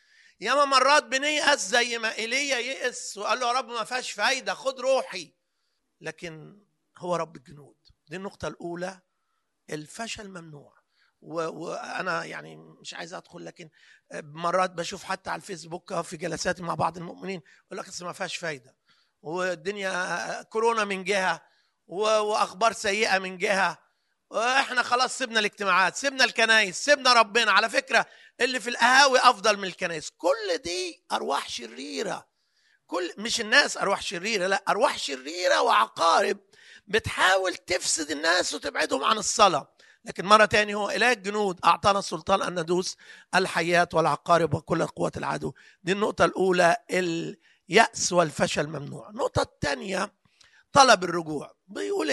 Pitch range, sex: 175-240 Hz, male